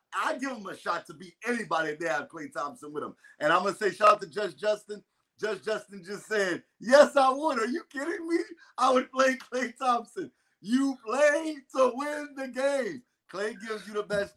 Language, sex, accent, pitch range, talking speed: English, male, American, 205-280 Hz, 215 wpm